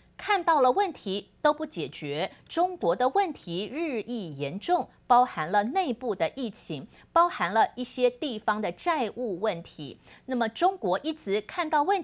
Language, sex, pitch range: Chinese, female, 180-290 Hz